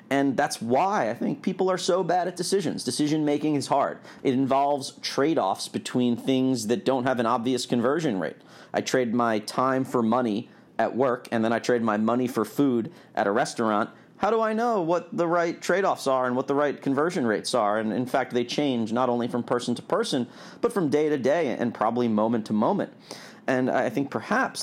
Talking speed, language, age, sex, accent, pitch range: 210 wpm, English, 40-59, male, American, 110-130 Hz